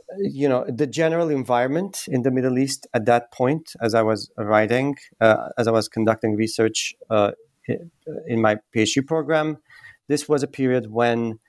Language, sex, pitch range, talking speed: English, male, 115-145 Hz, 165 wpm